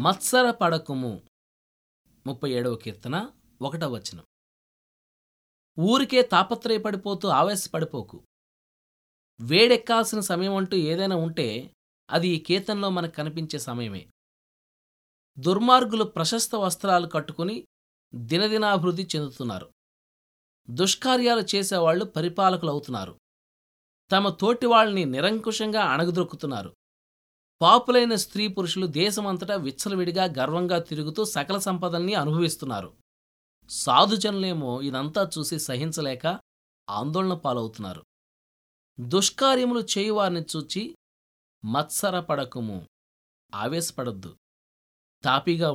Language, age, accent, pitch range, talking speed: Telugu, 20-39, native, 125-200 Hz, 75 wpm